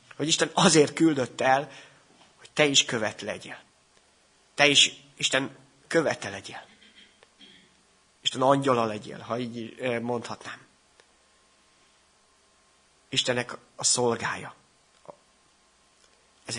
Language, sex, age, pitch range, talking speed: Hungarian, male, 30-49, 125-160 Hz, 90 wpm